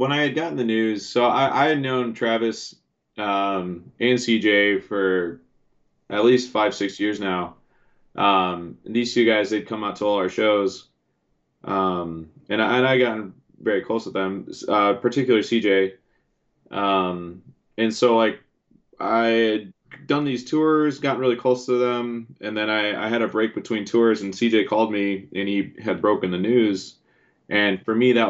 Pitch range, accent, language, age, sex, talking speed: 95-115 Hz, American, English, 20-39, male, 180 wpm